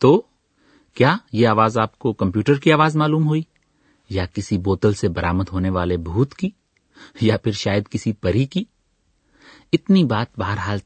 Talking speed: 160 wpm